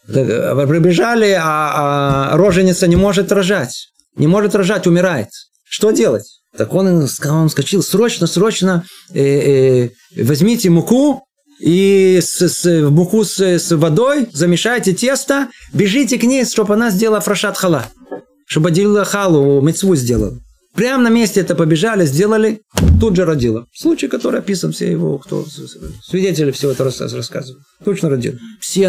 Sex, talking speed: male, 135 wpm